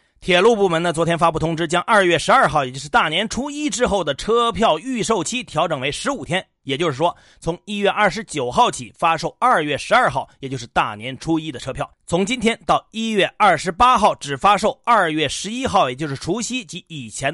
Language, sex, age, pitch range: Chinese, male, 30-49, 135-195 Hz